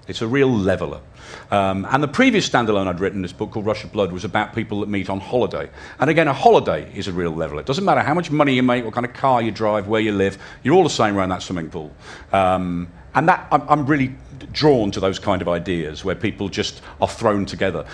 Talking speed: 250 wpm